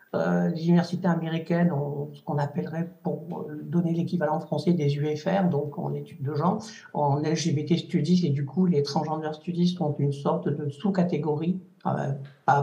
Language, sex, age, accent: French, male, 60-79, French